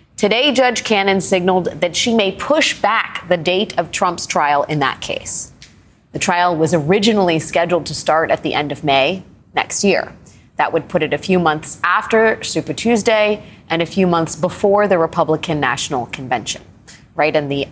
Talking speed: 180 wpm